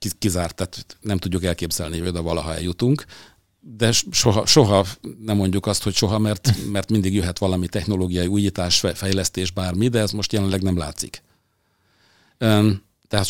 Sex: male